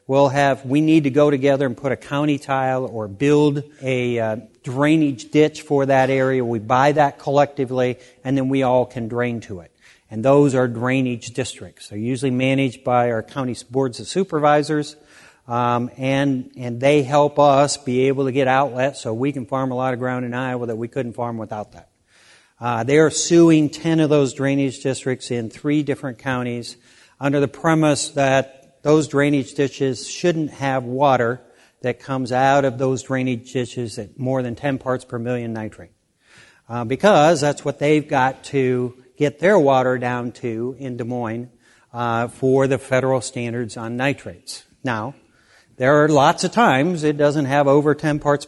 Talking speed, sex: 180 wpm, male